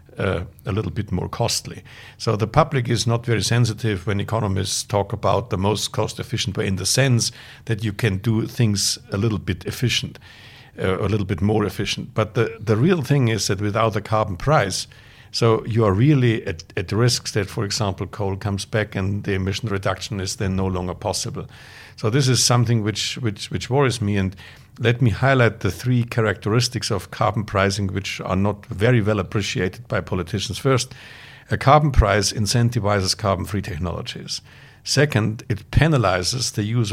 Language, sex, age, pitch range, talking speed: English, male, 60-79, 100-120 Hz, 185 wpm